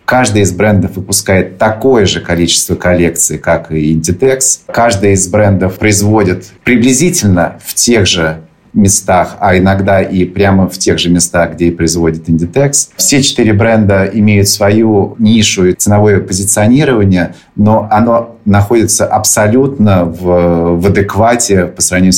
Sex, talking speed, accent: male, 135 wpm, native